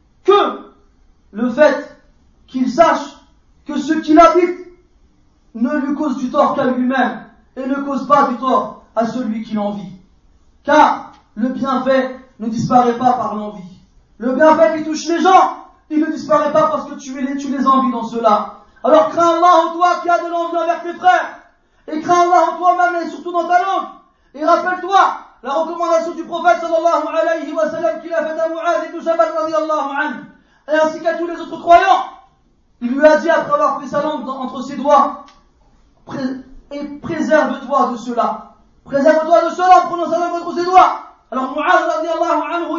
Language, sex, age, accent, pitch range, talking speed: French, male, 40-59, French, 265-340 Hz, 185 wpm